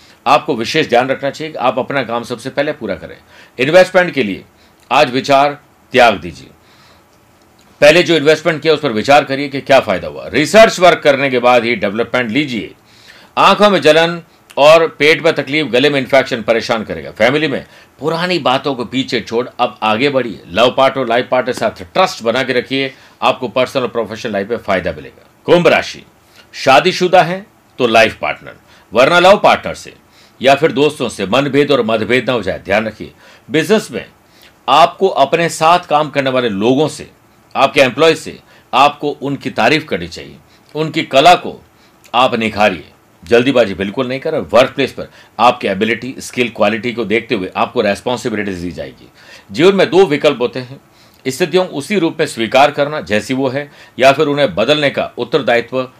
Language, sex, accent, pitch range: Hindi, male, native, 120-155 Hz